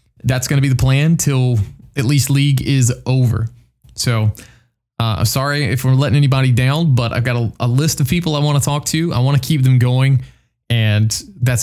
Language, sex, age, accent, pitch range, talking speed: English, male, 20-39, American, 120-140 Hz, 210 wpm